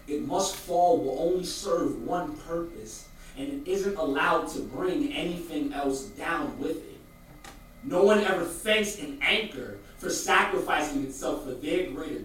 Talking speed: 150 wpm